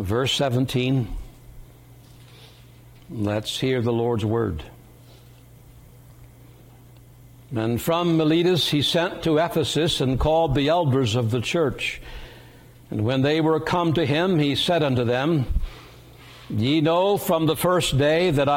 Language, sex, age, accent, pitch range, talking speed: English, male, 60-79, American, 125-160 Hz, 125 wpm